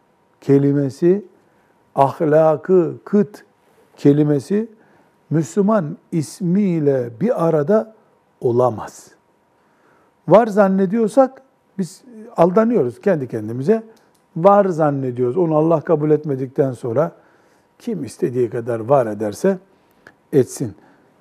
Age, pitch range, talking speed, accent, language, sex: 60-79, 135-185 Hz, 80 wpm, native, Turkish, male